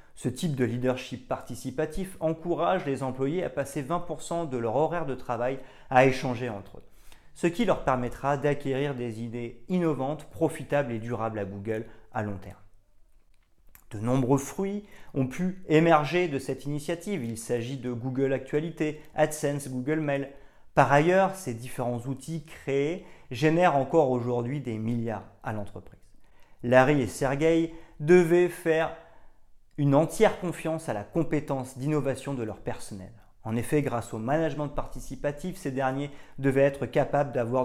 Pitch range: 110-150 Hz